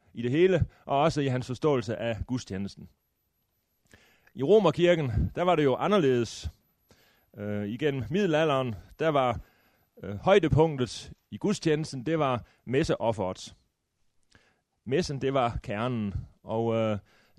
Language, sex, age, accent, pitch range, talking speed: Danish, male, 30-49, native, 110-150 Hz, 125 wpm